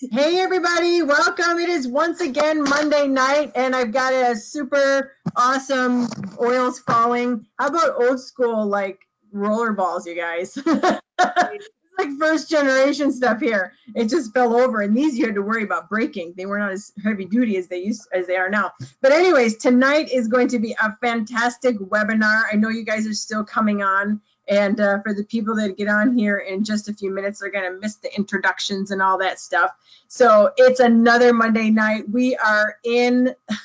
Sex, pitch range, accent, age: female, 210-255 Hz, American, 30-49